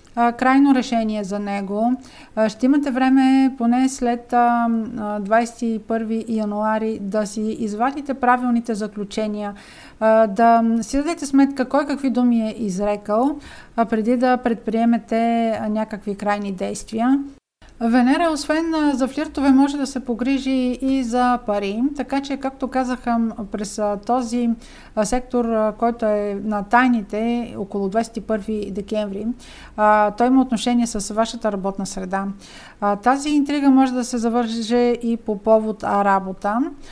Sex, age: female, 50-69